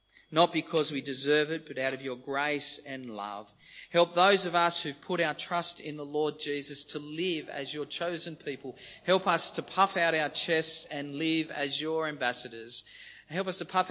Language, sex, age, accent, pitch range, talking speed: English, male, 40-59, Australian, 115-150 Hz, 200 wpm